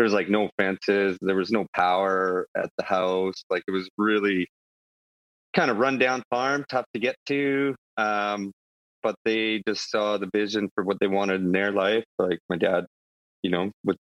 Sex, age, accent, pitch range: male, 30-49, American, 90-110 Hz